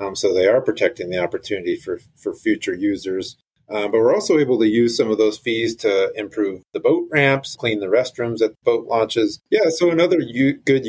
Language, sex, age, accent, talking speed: English, male, 30-49, American, 205 wpm